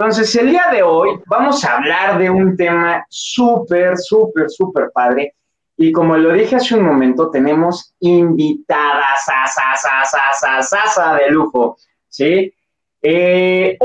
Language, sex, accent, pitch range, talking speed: Spanish, male, Mexican, 140-195 Hz, 145 wpm